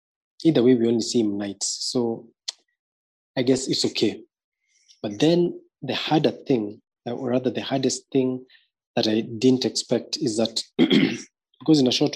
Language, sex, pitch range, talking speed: English, male, 110-130 Hz, 160 wpm